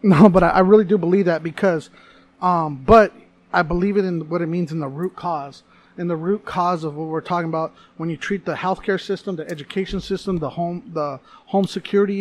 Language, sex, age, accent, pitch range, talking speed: English, male, 30-49, American, 165-210 Hz, 215 wpm